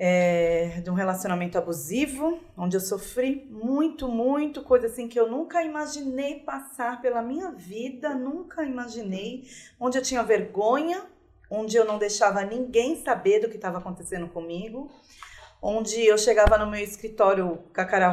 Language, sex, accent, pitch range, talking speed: Portuguese, female, Brazilian, 195-260 Hz, 150 wpm